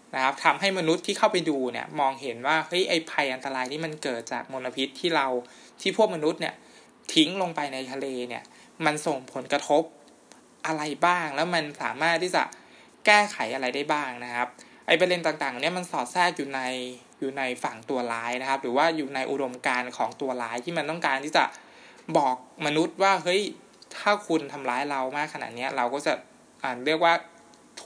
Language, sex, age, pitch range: Thai, male, 20-39, 130-170 Hz